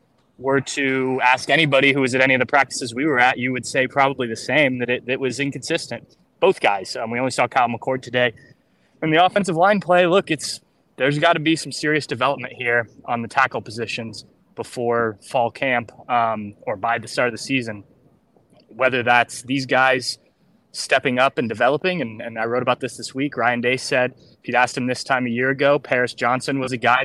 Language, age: English, 20-39